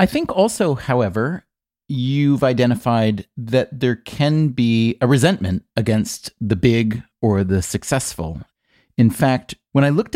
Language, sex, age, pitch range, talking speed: English, male, 30-49, 105-135 Hz, 135 wpm